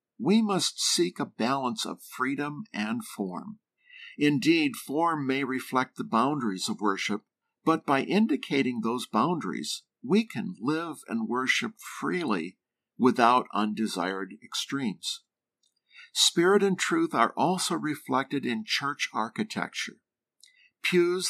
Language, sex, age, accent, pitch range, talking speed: English, male, 50-69, American, 130-210 Hz, 115 wpm